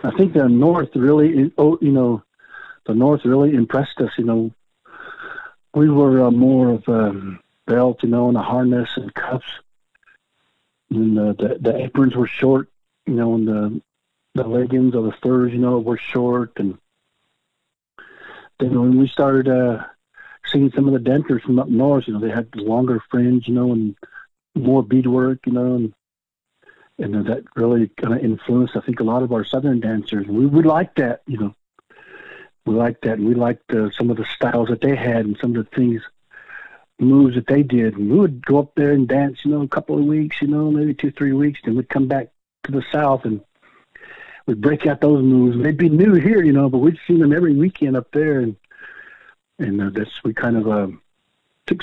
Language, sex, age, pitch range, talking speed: English, male, 50-69, 115-145 Hz, 205 wpm